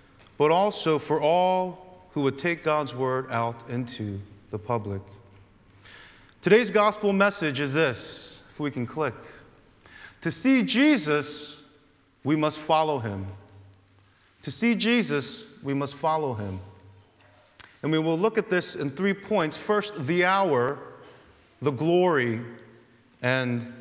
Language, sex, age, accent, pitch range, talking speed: English, male, 30-49, American, 110-185 Hz, 130 wpm